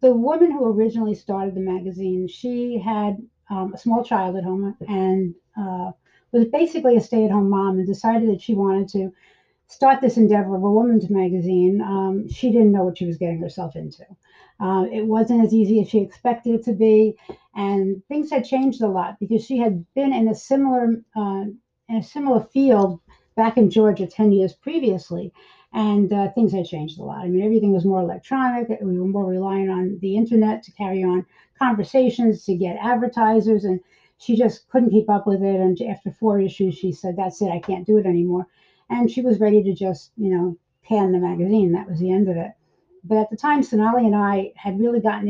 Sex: female